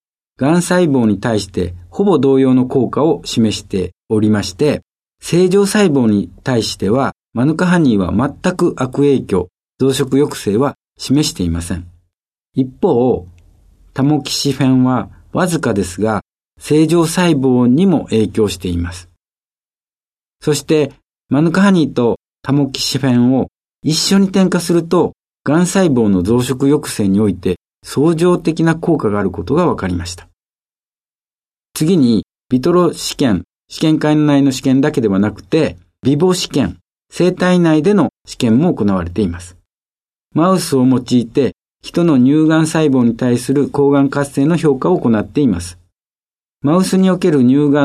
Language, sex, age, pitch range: Japanese, male, 50-69, 105-155 Hz